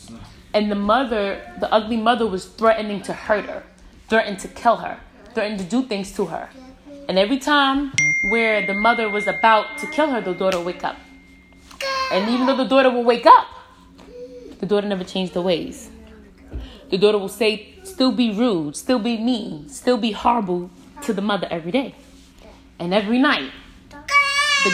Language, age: English, 20-39